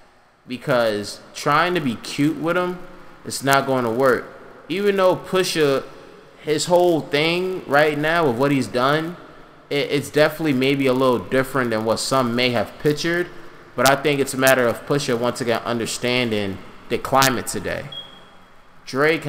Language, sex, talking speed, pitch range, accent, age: English, male, 160 wpm, 120-150 Hz, American, 20-39